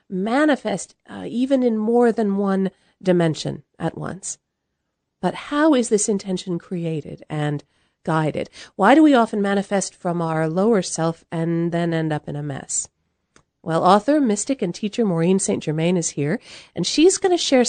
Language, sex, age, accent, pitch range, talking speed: English, female, 40-59, American, 165-220 Hz, 165 wpm